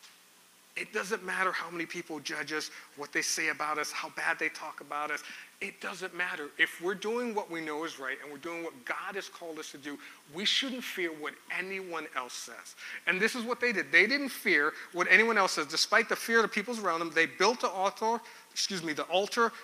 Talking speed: 225 wpm